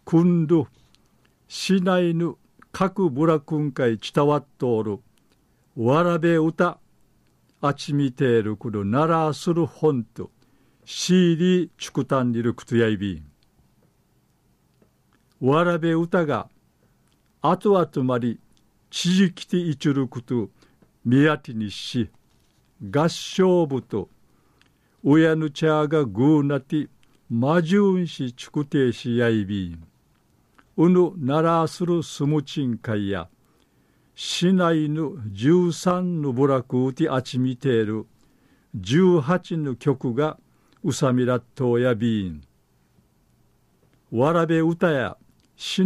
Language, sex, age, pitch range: Japanese, male, 50-69, 125-165 Hz